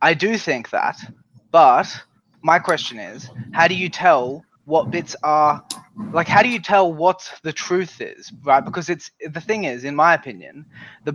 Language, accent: English, Australian